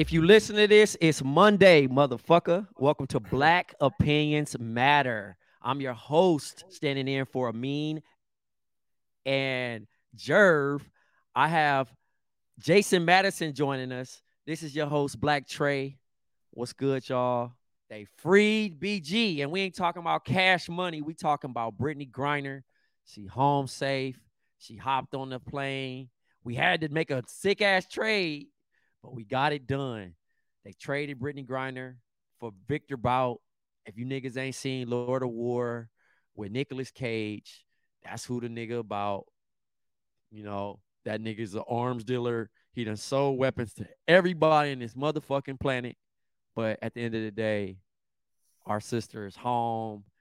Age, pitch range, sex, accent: 30-49, 120-160 Hz, male, American